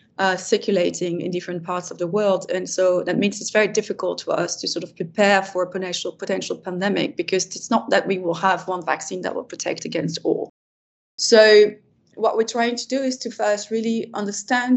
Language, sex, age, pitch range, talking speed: English, female, 30-49, 180-205 Hz, 205 wpm